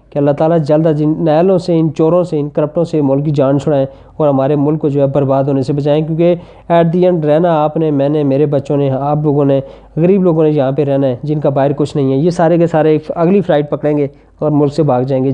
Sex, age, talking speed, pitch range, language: male, 20-39, 275 wpm, 135-155 Hz, Urdu